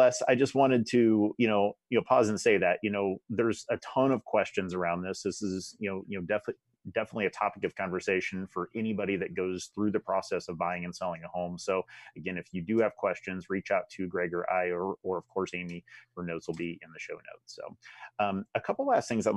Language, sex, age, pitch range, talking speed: English, male, 30-49, 90-105 Hz, 245 wpm